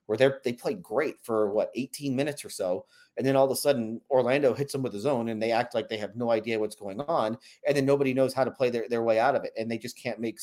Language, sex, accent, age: English, male, American, 30-49